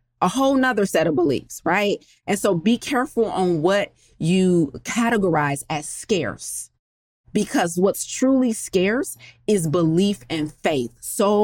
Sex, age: female, 30-49